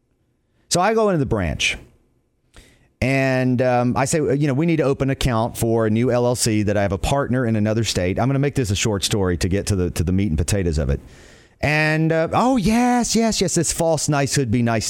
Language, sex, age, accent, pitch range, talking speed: English, male, 40-59, American, 100-150 Hz, 245 wpm